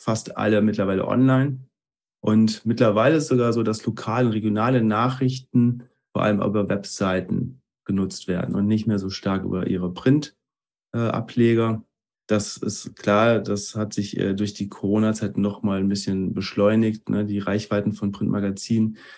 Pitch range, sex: 100-120 Hz, male